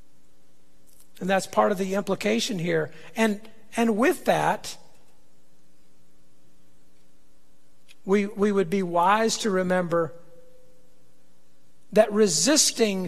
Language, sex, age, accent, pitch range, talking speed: English, male, 50-69, American, 145-225 Hz, 90 wpm